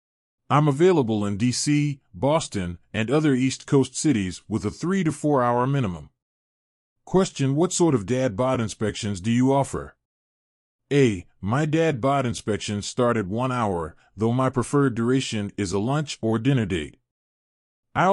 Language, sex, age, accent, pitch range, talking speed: English, male, 40-59, American, 110-140 Hz, 155 wpm